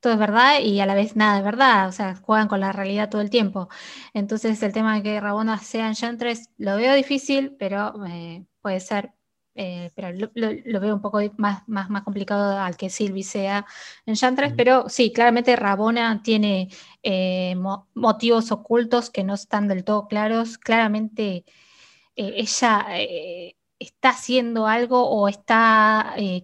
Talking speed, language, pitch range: 175 wpm, Spanish, 200-235 Hz